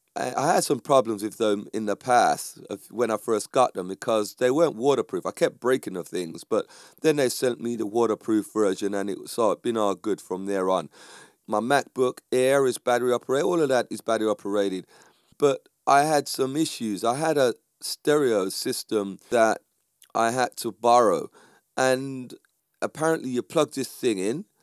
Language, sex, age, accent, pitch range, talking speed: English, male, 30-49, British, 105-140 Hz, 180 wpm